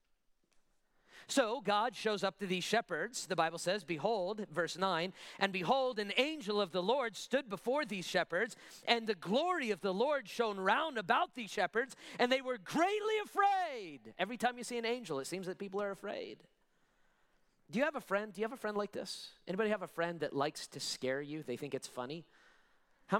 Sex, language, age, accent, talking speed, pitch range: male, English, 40-59, American, 200 wpm, 165-220 Hz